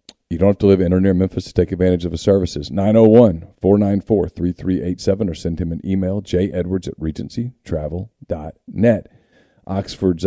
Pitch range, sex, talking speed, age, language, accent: 90-115 Hz, male, 145 wpm, 40-59, English, American